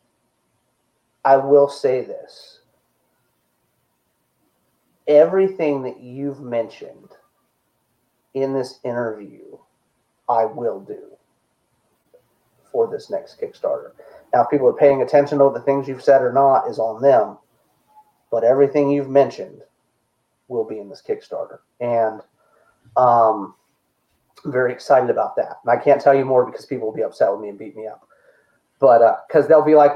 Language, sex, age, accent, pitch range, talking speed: English, male, 30-49, American, 125-155 Hz, 145 wpm